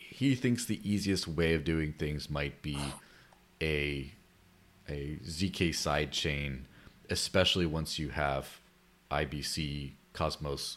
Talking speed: 110 wpm